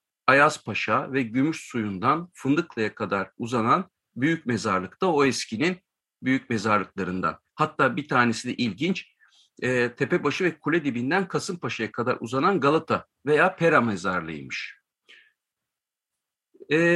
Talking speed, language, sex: 115 wpm, Turkish, male